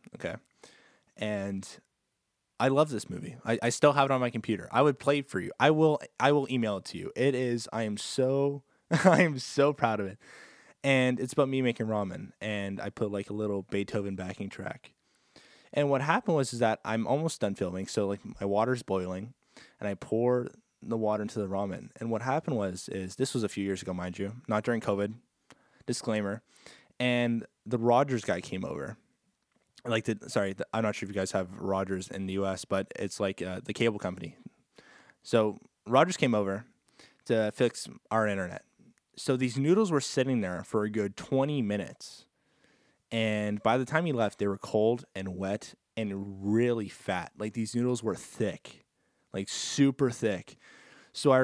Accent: American